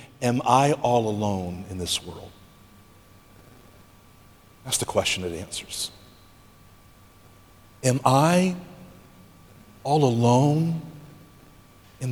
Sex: male